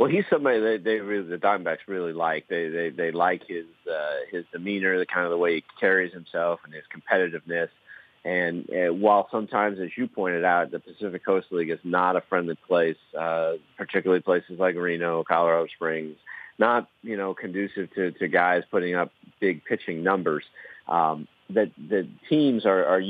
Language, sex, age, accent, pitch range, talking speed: English, male, 40-59, American, 85-100 Hz, 185 wpm